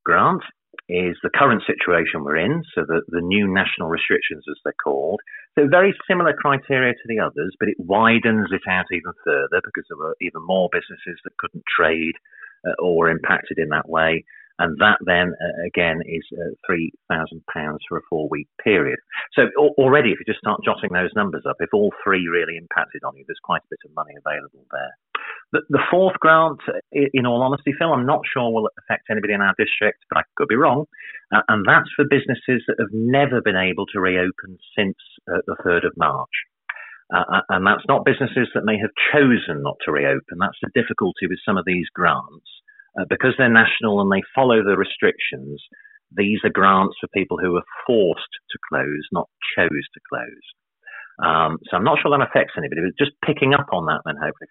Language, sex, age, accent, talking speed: English, male, 40-59, British, 200 wpm